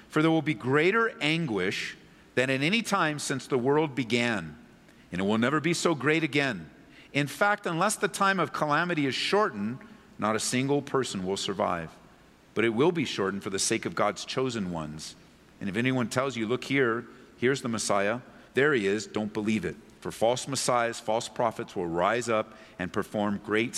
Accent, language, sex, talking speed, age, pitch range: American, English, male, 190 wpm, 50-69, 100-135 Hz